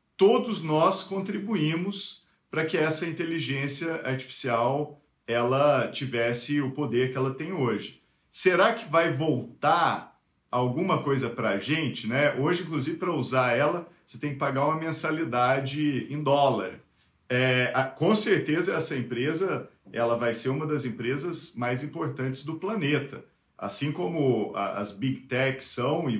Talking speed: 145 wpm